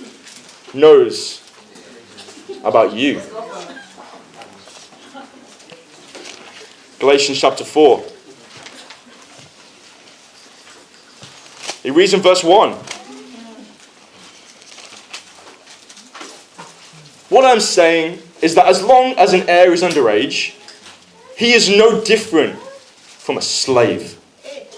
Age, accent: 20-39, British